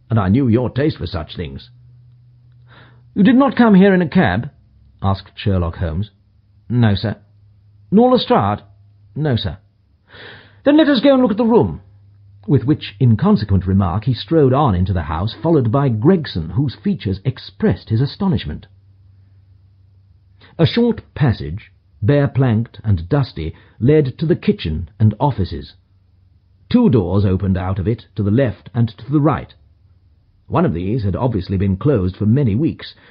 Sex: male